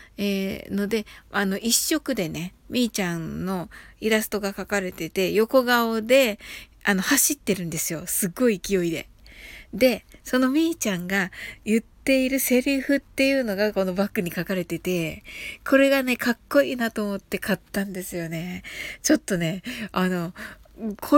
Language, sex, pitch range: Japanese, female, 190-255 Hz